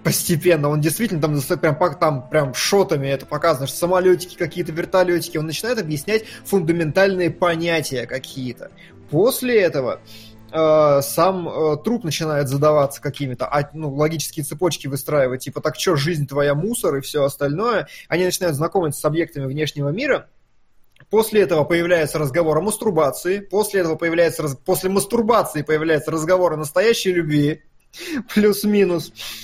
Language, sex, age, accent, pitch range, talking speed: Russian, male, 20-39, native, 145-185 Hz, 140 wpm